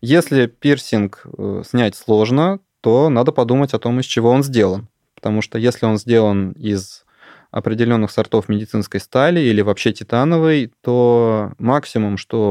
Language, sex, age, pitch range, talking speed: Russian, male, 20-39, 105-130 Hz, 140 wpm